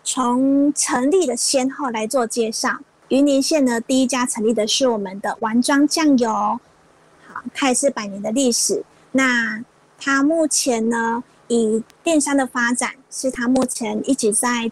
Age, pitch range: 30-49, 230-275 Hz